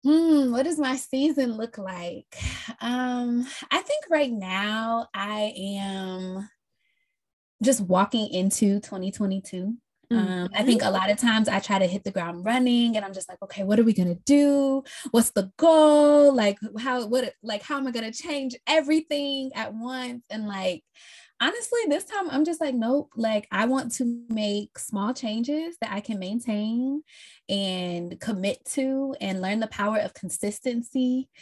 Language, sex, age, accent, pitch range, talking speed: English, female, 20-39, American, 190-260 Hz, 165 wpm